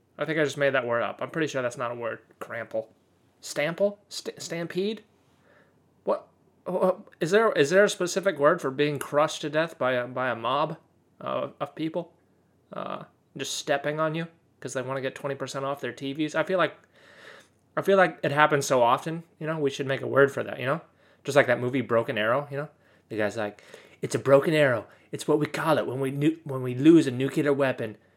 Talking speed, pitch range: 225 wpm, 125-175 Hz